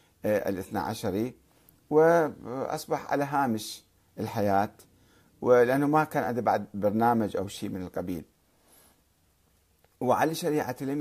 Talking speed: 105 wpm